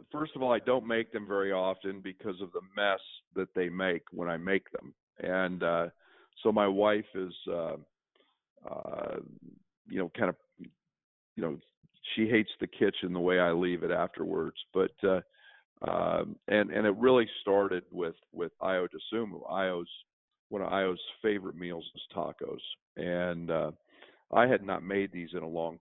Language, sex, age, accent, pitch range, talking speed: English, male, 40-59, American, 90-105 Hz, 175 wpm